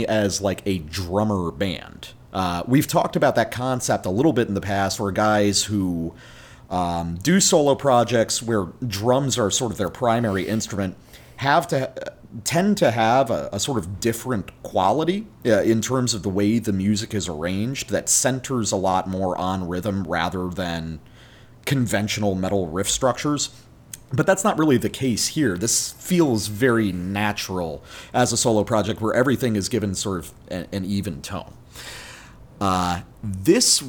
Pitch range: 100-125 Hz